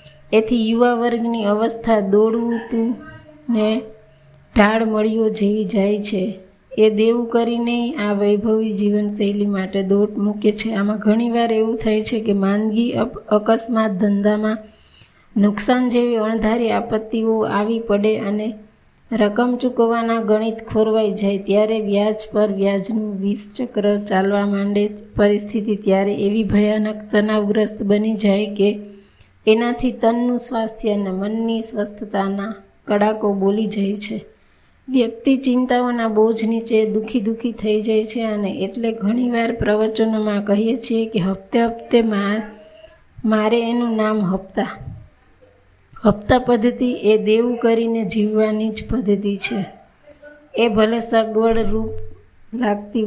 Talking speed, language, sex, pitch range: 105 wpm, Gujarati, female, 205-230 Hz